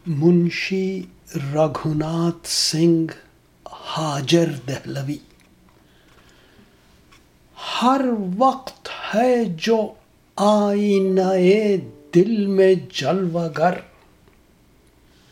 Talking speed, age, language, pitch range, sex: 50 wpm, 60-79, English, 175-235 Hz, male